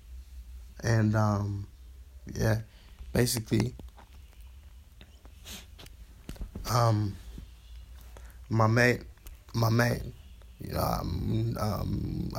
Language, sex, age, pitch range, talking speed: English, male, 20-39, 75-115 Hz, 65 wpm